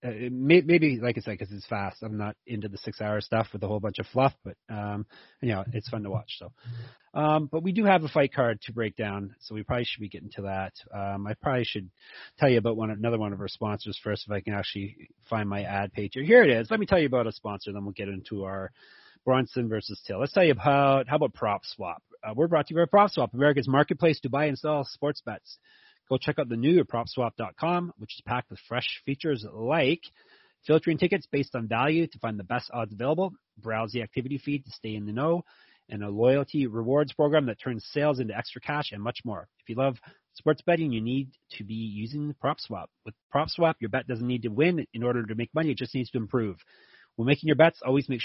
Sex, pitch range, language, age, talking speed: male, 110-145 Hz, English, 30-49, 240 wpm